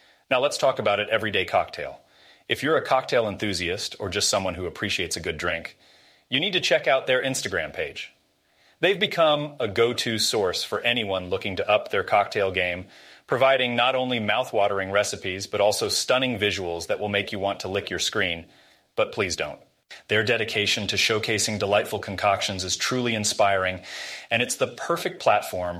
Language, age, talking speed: English, 30-49, 175 wpm